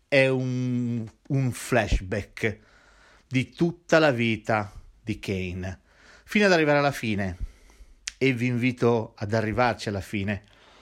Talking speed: 120 wpm